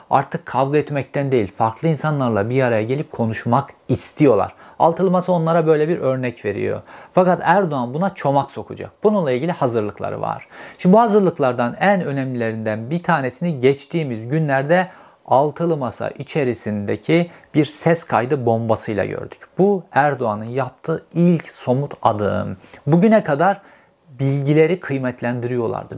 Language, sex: Turkish, male